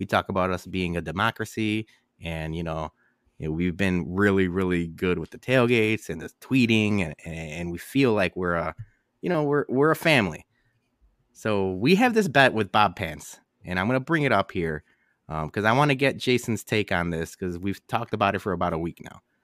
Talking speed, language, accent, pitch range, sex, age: 215 wpm, English, American, 90-140 Hz, male, 20-39